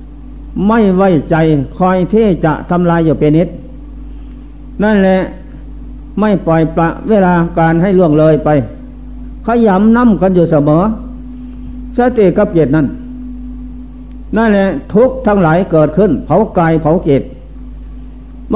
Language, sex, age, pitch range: Thai, male, 60-79, 155-210 Hz